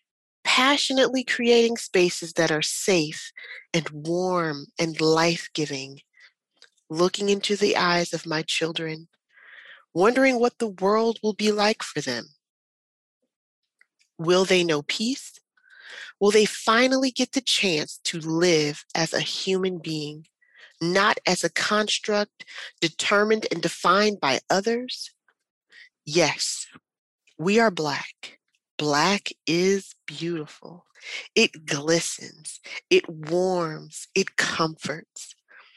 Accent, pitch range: American, 160-220 Hz